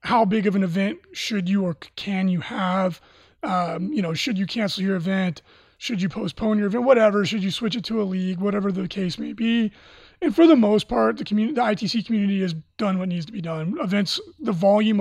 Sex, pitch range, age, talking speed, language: male, 185-220 Hz, 20-39, 230 wpm, English